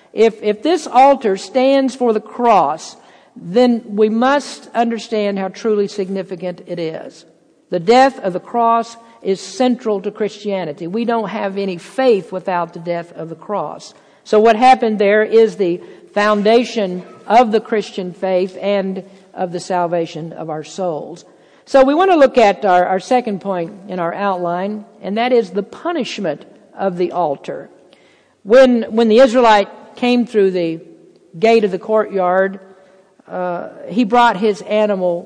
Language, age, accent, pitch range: English, 50-69, American, 185-225 Hz